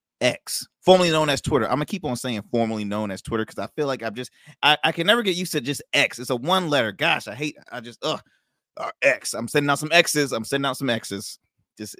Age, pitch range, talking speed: 30-49, 105-140 Hz, 255 wpm